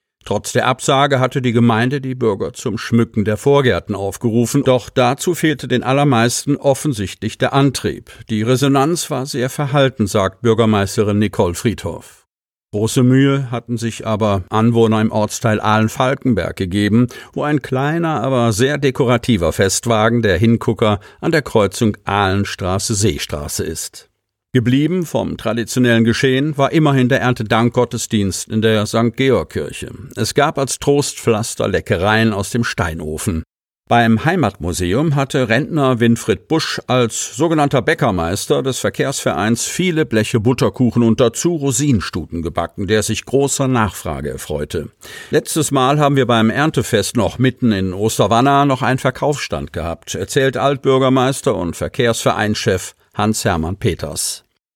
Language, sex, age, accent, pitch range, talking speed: German, male, 50-69, German, 105-135 Hz, 130 wpm